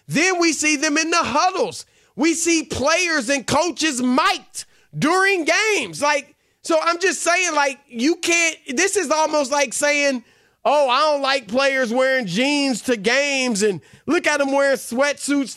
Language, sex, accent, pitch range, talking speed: English, male, American, 215-285 Hz, 170 wpm